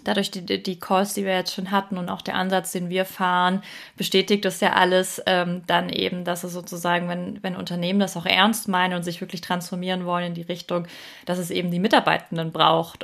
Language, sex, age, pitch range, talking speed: German, female, 20-39, 170-190 Hz, 215 wpm